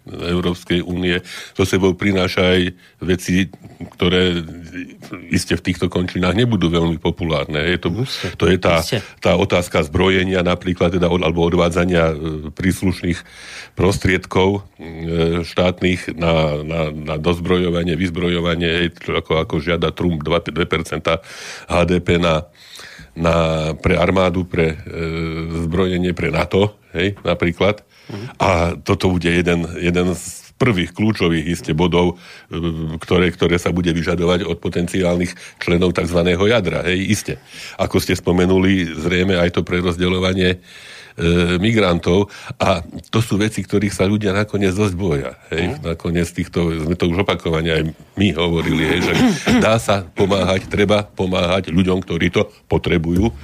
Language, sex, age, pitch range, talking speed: Slovak, male, 40-59, 85-95 Hz, 130 wpm